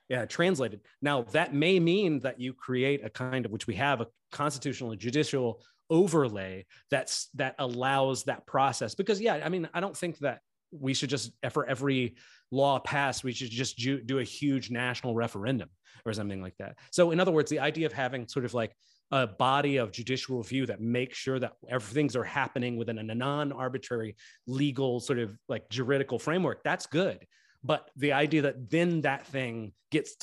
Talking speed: 190 wpm